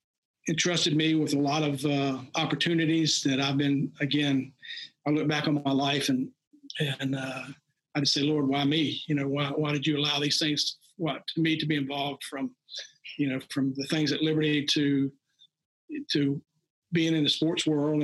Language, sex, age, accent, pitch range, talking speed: English, male, 50-69, American, 145-160 Hz, 195 wpm